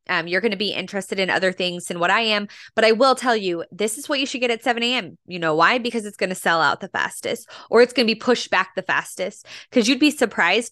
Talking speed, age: 285 wpm, 20-39